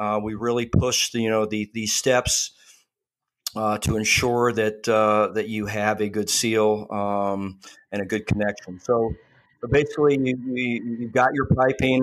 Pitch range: 105-120 Hz